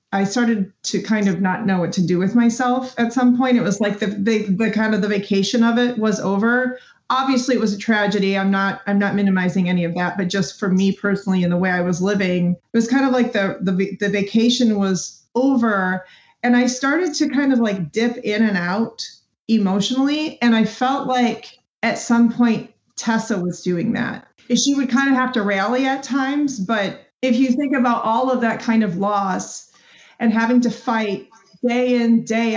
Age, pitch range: 30-49, 200-245 Hz